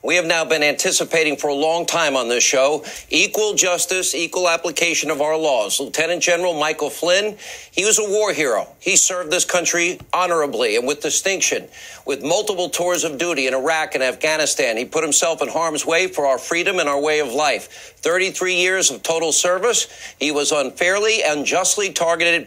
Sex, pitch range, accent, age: male, 155-190 Hz, American, 50-69